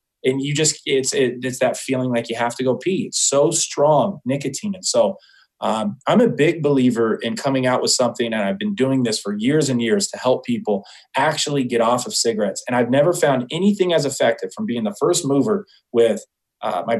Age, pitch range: 30-49, 125-155 Hz